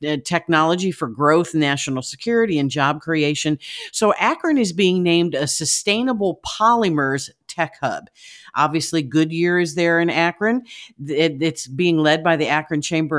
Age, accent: 50-69, American